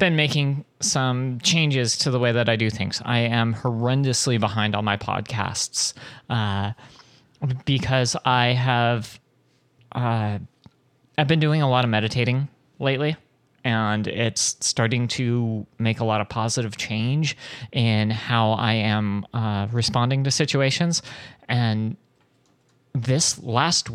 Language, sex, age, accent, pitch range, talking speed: English, male, 30-49, American, 115-135 Hz, 130 wpm